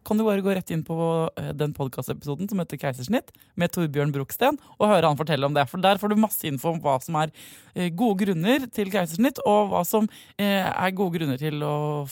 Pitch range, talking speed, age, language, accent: 145-195 Hz, 215 wpm, 20-39, English, Swedish